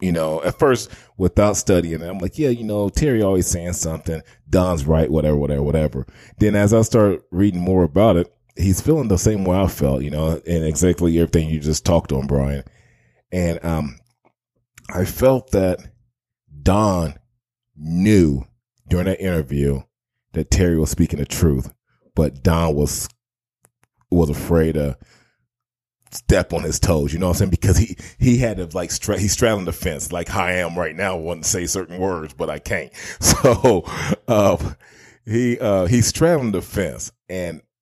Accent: American